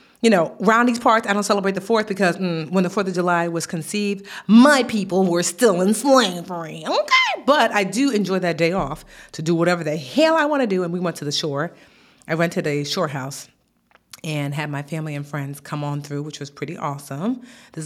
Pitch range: 150-205 Hz